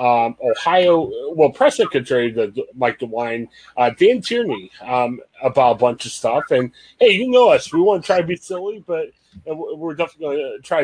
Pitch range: 125-195 Hz